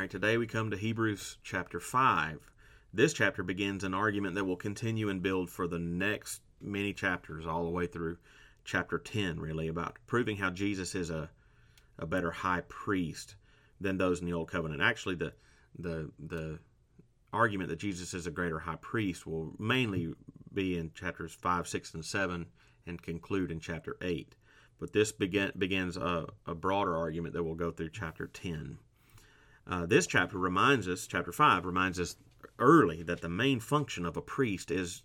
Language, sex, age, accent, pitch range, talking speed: English, male, 30-49, American, 85-110 Hz, 175 wpm